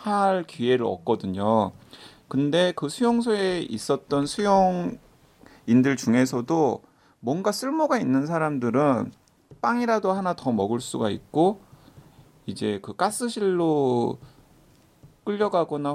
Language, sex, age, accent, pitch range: Korean, male, 30-49, native, 110-175 Hz